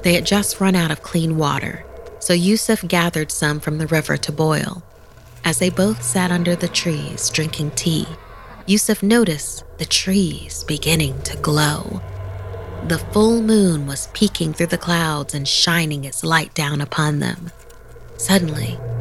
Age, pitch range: 30-49, 140-185 Hz